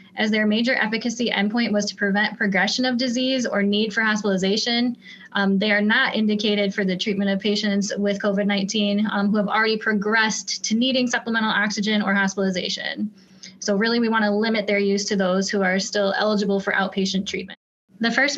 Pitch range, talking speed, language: 200-235 Hz, 185 wpm, English